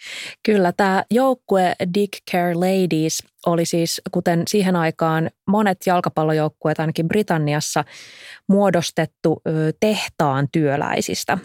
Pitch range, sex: 155-195 Hz, female